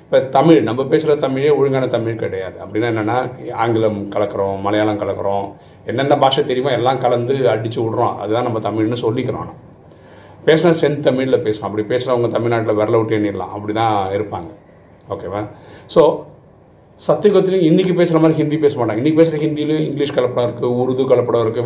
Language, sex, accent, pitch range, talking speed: Tamil, male, native, 115-160 Hz, 160 wpm